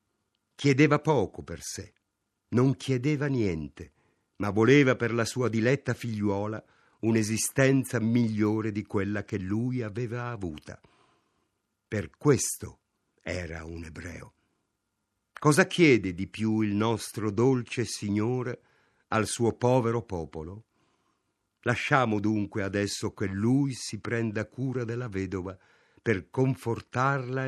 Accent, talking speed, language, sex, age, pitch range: native, 110 wpm, Italian, male, 50-69, 100-125 Hz